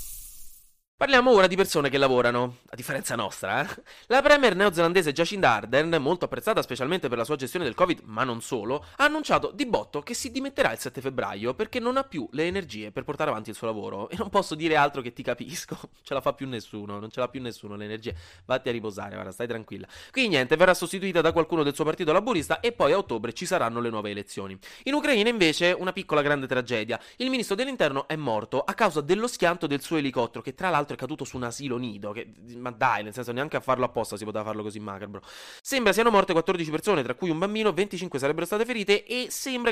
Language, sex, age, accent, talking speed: Italian, male, 20-39, native, 230 wpm